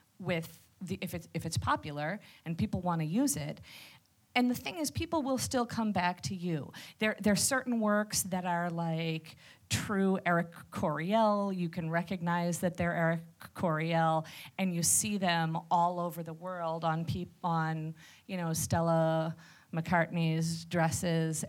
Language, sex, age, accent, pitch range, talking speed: English, female, 40-59, American, 160-190 Hz, 160 wpm